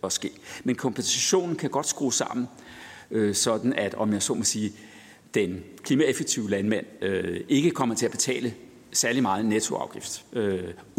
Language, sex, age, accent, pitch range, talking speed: Danish, male, 60-79, native, 105-130 Hz, 145 wpm